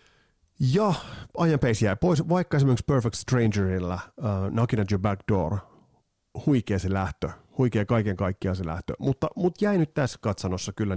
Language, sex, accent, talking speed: Finnish, male, native, 160 wpm